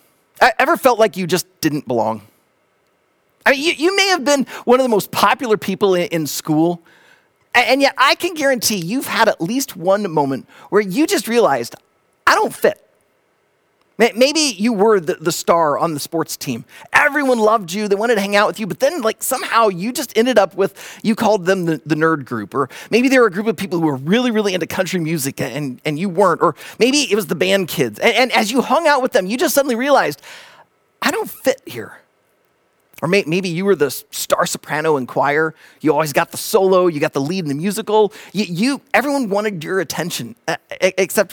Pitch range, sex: 170-250 Hz, male